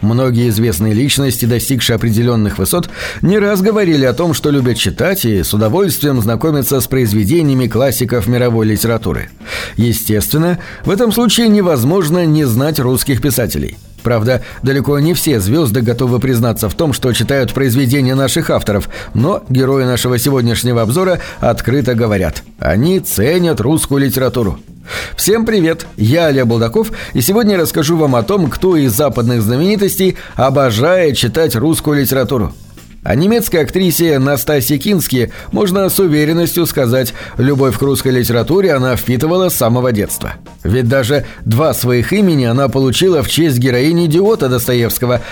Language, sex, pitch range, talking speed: Russian, male, 120-160 Hz, 140 wpm